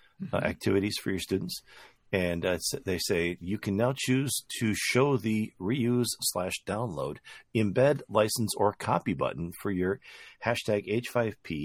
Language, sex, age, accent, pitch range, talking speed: English, male, 40-59, American, 80-105 Hz, 145 wpm